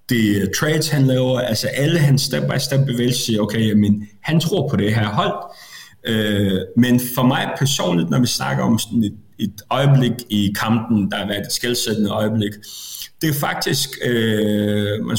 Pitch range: 105-130 Hz